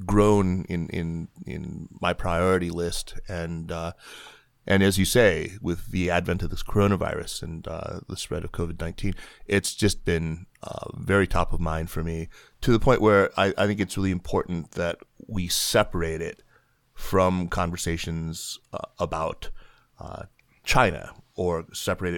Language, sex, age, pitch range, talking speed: English, male, 30-49, 85-95 Hz, 155 wpm